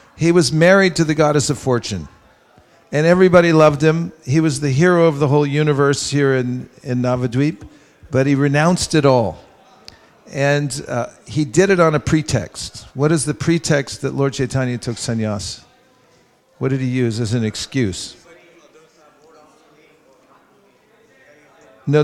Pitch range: 130-155 Hz